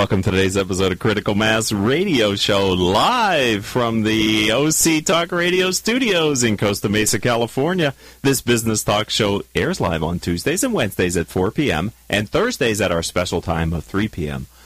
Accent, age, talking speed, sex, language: American, 40-59, 170 wpm, male, English